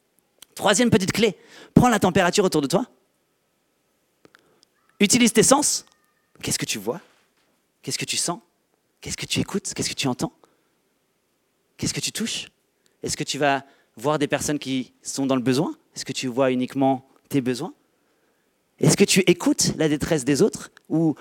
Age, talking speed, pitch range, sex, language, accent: 30-49, 170 wpm, 130-180 Hz, male, French, French